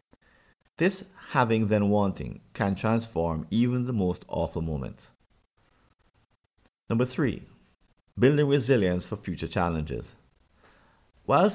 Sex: male